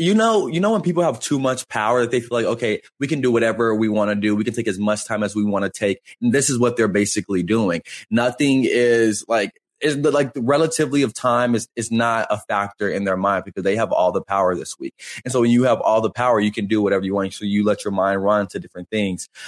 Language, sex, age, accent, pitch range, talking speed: English, male, 20-39, American, 100-130 Hz, 270 wpm